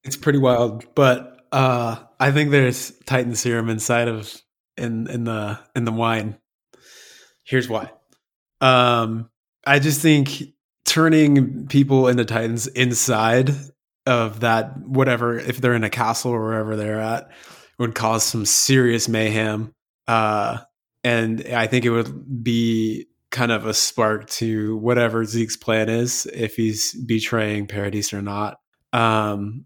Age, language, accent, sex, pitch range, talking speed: 20-39, English, American, male, 110-125 Hz, 140 wpm